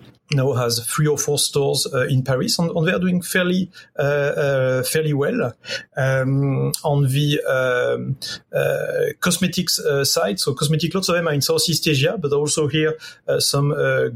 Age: 30-49